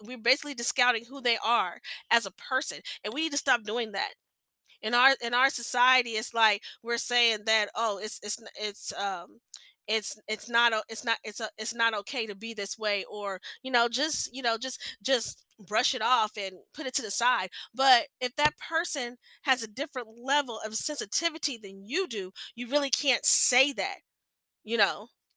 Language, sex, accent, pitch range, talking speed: English, female, American, 230-285 Hz, 195 wpm